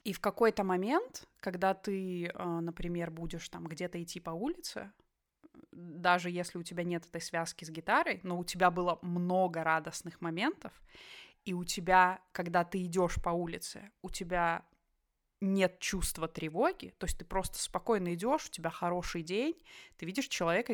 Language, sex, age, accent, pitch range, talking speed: Russian, female, 20-39, native, 170-190 Hz, 160 wpm